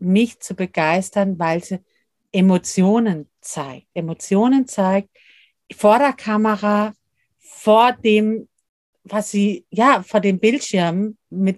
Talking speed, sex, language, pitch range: 110 wpm, female, German, 180-225 Hz